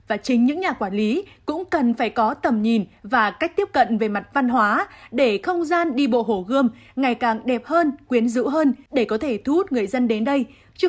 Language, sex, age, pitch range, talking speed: Vietnamese, female, 20-39, 225-285 Hz, 240 wpm